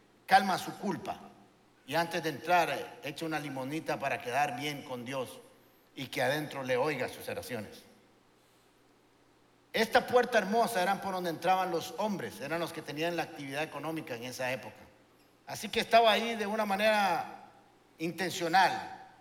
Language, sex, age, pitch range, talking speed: Spanish, male, 50-69, 160-240 Hz, 155 wpm